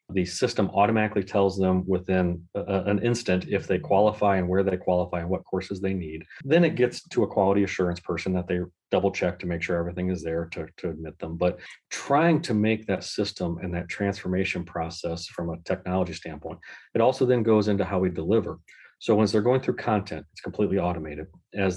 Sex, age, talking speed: male, 40-59, 205 wpm